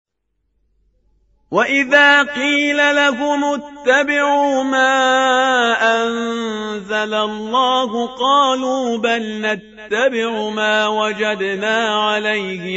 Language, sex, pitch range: Persian, male, 190-225 Hz